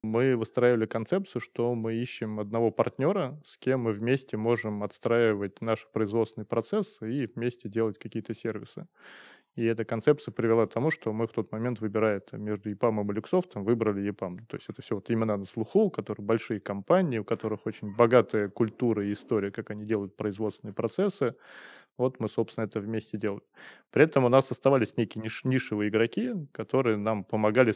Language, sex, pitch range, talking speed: Russian, male, 105-120 Hz, 175 wpm